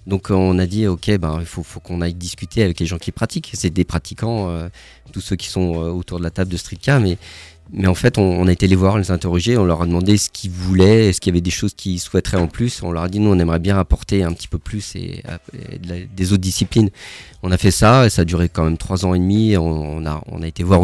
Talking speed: 295 wpm